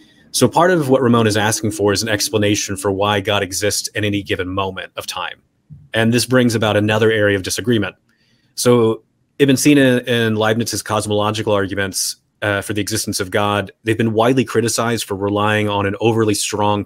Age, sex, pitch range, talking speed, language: 30-49, male, 105-120 Hz, 185 wpm, English